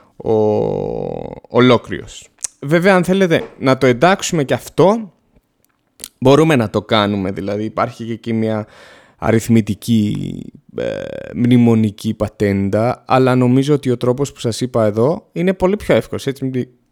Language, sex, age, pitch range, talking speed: Greek, male, 20-39, 115-180 Hz, 135 wpm